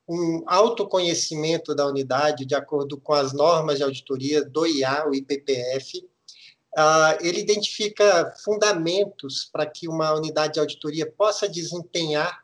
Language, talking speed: Portuguese, 125 wpm